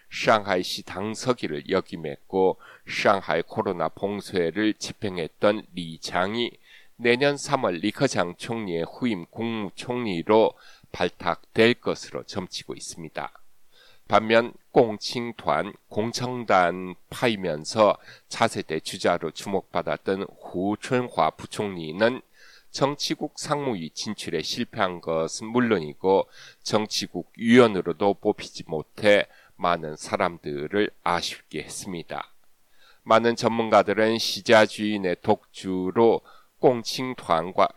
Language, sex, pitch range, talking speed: English, male, 90-120 Hz, 75 wpm